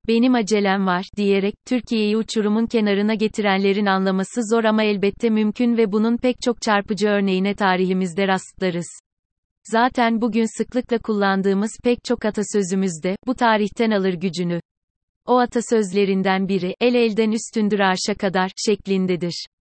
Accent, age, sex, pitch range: native, 30-49, female, 195-230 Hz